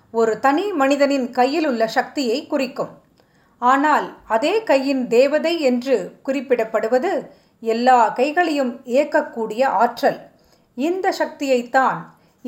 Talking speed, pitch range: 90 wpm, 235-305 Hz